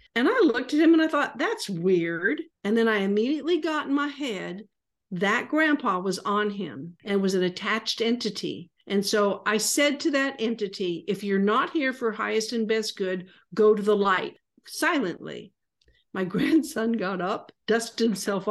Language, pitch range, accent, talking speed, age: English, 200-295 Hz, American, 180 wpm, 50-69